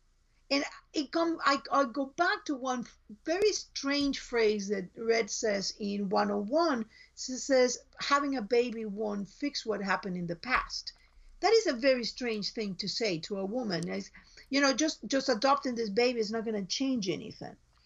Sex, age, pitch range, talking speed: female, 50-69, 195-260 Hz, 180 wpm